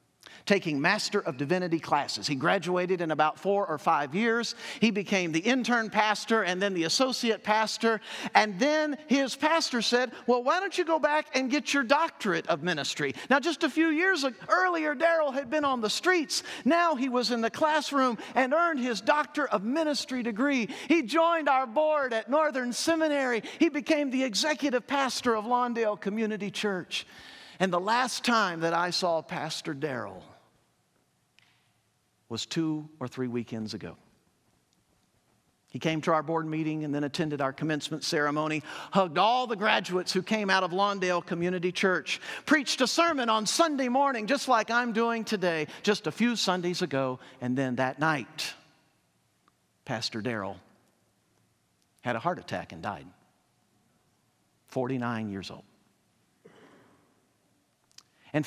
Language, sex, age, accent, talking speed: English, male, 50-69, American, 155 wpm